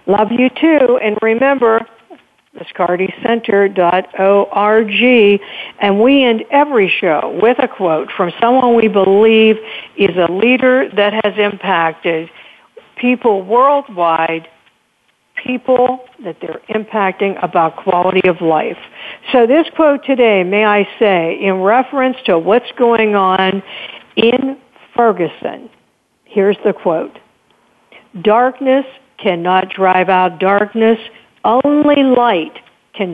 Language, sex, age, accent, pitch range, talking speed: English, female, 60-79, American, 185-245 Hz, 110 wpm